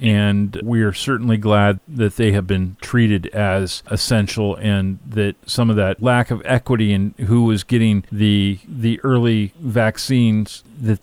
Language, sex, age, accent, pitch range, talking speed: English, male, 50-69, American, 105-125 Hz, 160 wpm